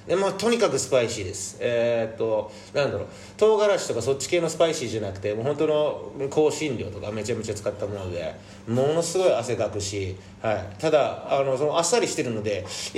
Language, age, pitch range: Japanese, 30-49, 105-155 Hz